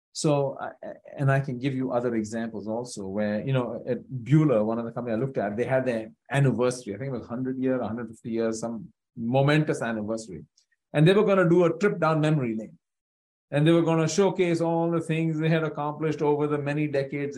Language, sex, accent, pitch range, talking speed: English, male, Indian, 125-180 Hz, 210 wpm